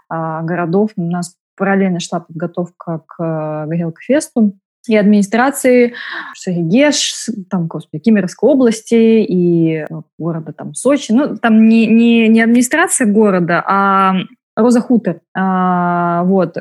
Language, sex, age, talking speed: Russian, female, 20-39, 100 wpm